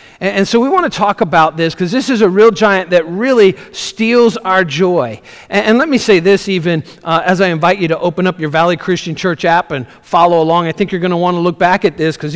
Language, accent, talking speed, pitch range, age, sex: English, American, 255 wpm, 165-205 Hz, 40-59, male